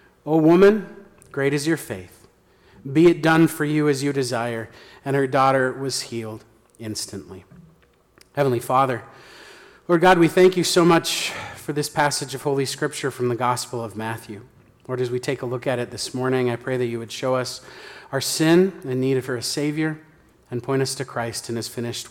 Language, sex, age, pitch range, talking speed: English, male, 40-59, 125-170 Hz, 195 wpm